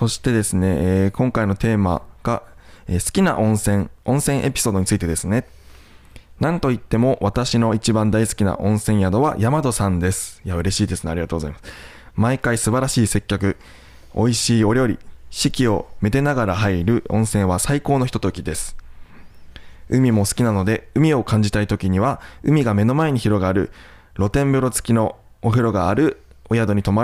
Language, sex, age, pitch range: Japanese, male, 20-39, 95-125 Hz